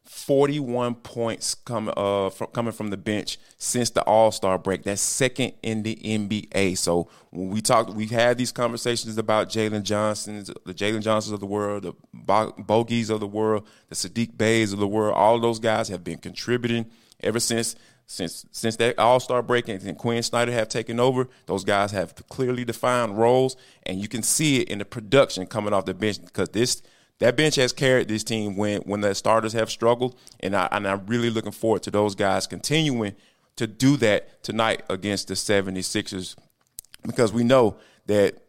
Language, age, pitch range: English, 30-49, 100-120 Hz